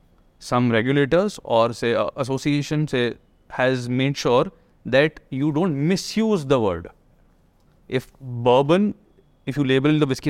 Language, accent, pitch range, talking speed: English, Indian, 110-135 Hz, 135 wpm